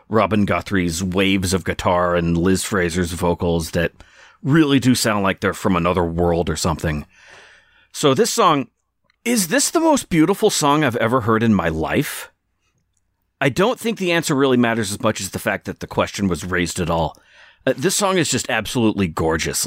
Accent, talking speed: American, 185 wpm